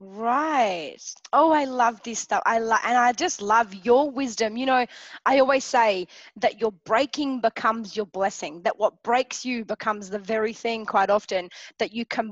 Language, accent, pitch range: English, Australian, 220-265 Hz